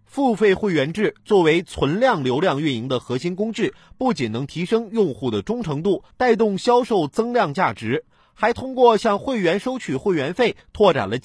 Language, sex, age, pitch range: Chinese, male, 30-49, 155-225 Hz